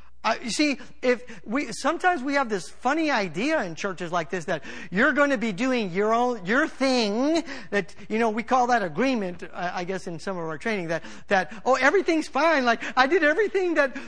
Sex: male